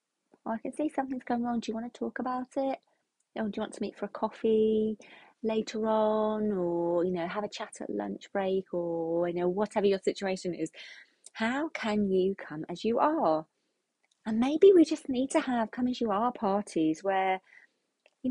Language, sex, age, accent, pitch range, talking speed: English, female, 30-49, British, 170-245 Hz, 190 wpm